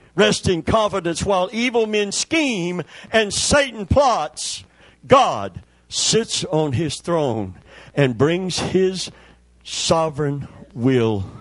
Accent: American